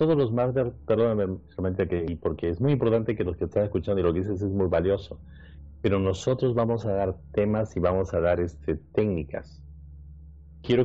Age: 40-59